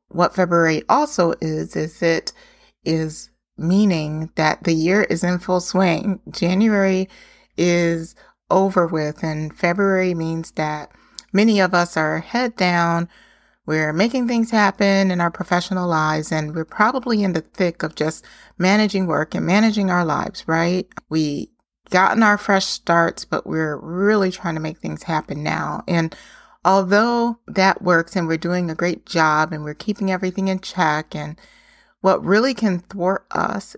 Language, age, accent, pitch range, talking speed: English, 30-49, American, 160-195 Hz, 155 wpm